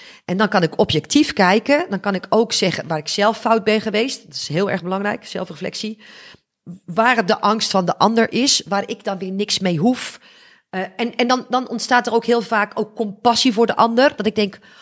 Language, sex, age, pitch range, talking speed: Dutch, female, 40-59, 185-230 Hz, 220 wpm